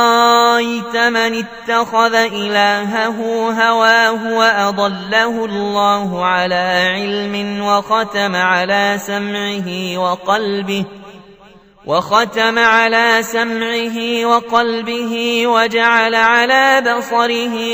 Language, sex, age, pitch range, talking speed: Arabic, male, 20-39, 185-225 Hz, 65 wpm